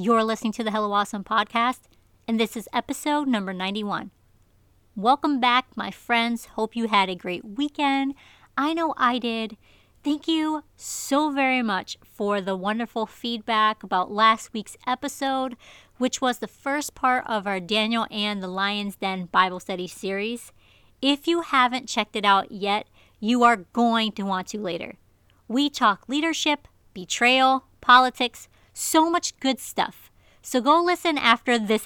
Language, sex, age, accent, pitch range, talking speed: English, female, 40-59, American, 210-265 Hz, 155 wpm